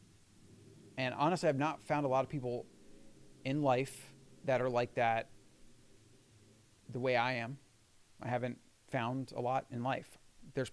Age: 30-49